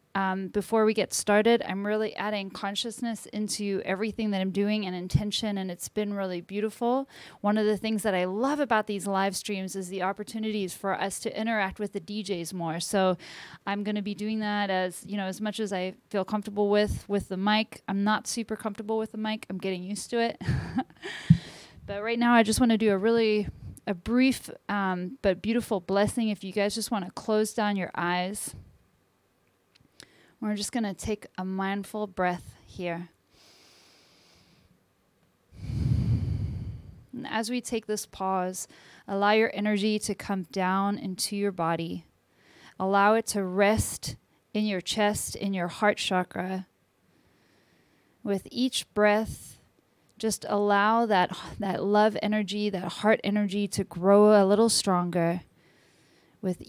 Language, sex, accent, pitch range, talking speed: English, female, American, 185-215 Hz, 165 wpm